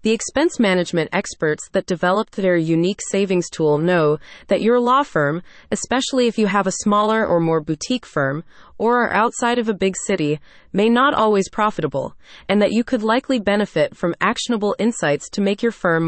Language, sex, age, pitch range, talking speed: English, female, 30-49, 170-220 Hz, 185 wpm